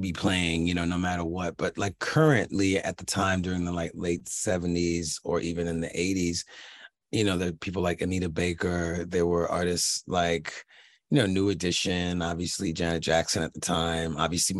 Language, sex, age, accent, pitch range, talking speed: English, male, 30-49, American, 85-100 Hz, 190 wpm